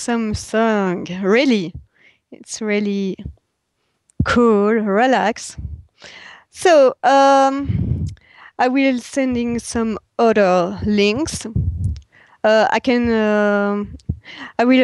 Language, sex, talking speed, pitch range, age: English, female, 90 wpm, 205-245 Hz, 30-49